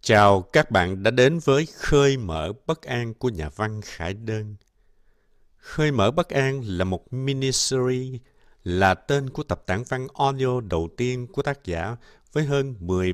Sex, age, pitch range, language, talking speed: male, 60-79, 90-125 Hz, Vietnamese, 170 wpm